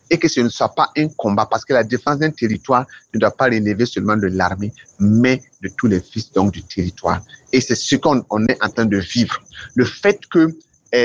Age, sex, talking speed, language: 40-59, male, 225 wpm, French